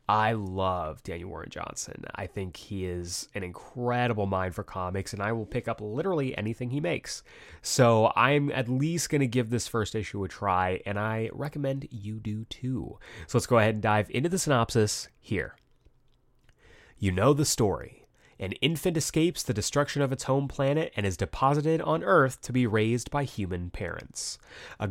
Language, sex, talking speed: English, male, 185 wpm